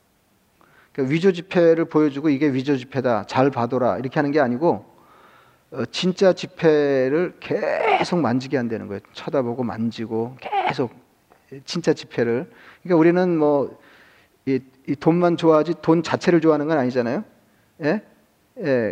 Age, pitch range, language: 40-59, 135-170 Hz, Korean